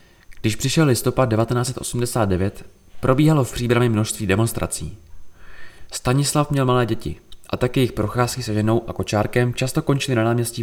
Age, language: 20-39, Czech